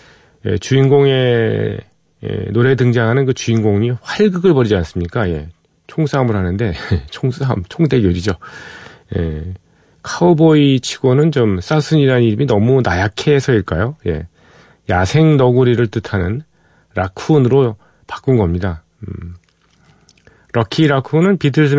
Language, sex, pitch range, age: Korean, male, 100-140 Hz, 40-59